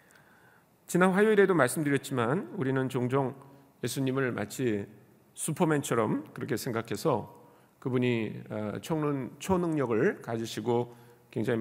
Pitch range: 125-185 Hz